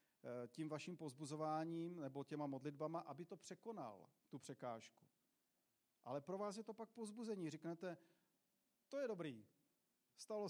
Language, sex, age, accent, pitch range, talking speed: Czech, male, 40-59, native, 150-190 Hz, 130 wpm